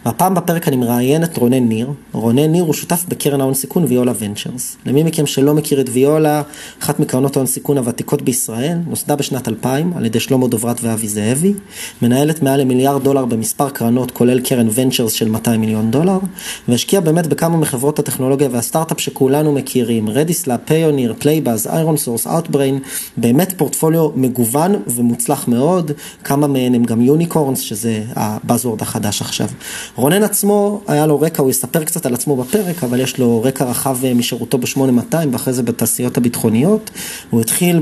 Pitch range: 120-155 Hz